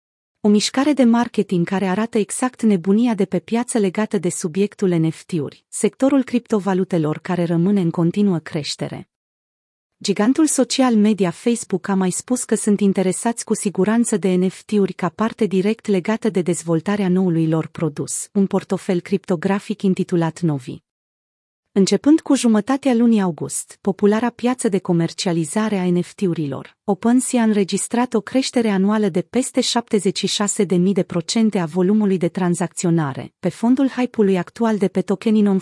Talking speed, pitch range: 140 wpm, 180-220 Hz